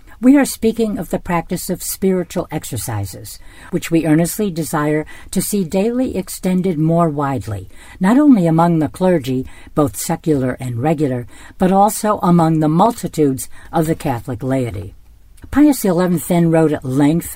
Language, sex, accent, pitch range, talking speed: English, female, American, 130-185 Hz, 150 wpm